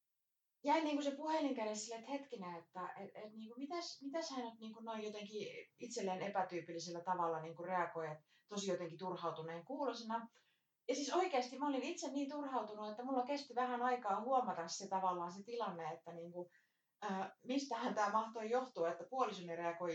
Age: 30-49